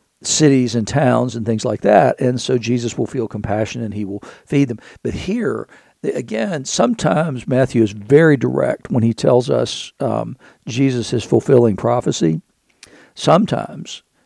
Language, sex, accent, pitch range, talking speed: English, male, American, 115-135 Hz, 150 wpm